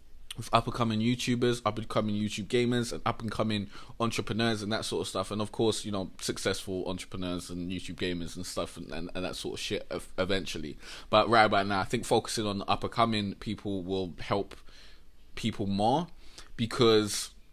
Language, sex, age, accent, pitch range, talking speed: English, male, 20-39, British, 100-120 Hz, 170 wpm